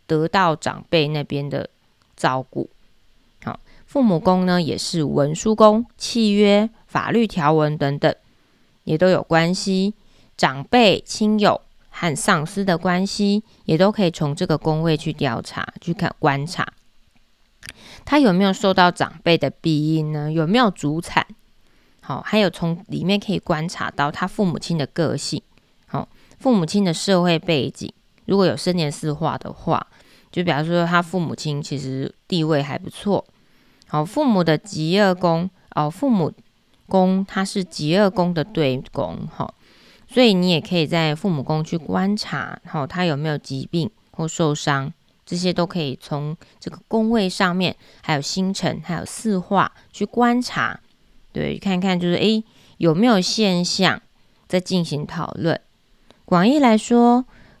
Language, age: Chinese, 20-39